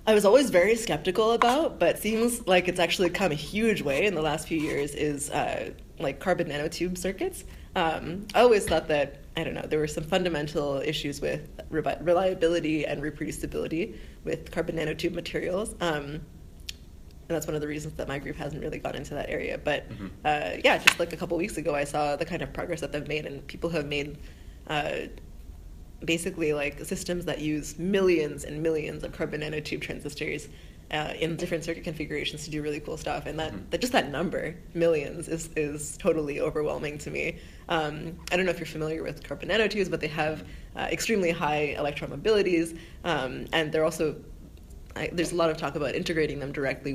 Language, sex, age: English, female, 20-39